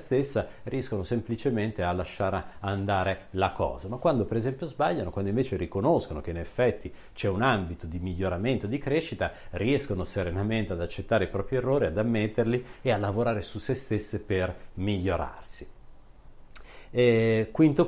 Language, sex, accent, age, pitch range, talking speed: Italian, male, native, 40-59, 90-115 Hz, 150 wpm